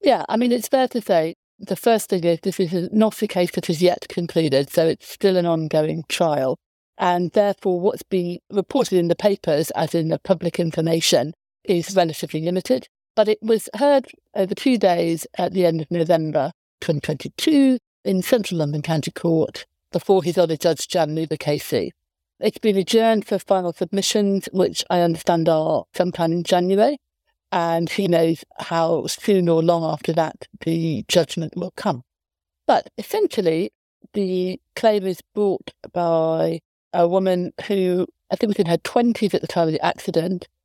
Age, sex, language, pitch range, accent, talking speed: 60-79, female, English, 165-200 Hz, British, 170 wpm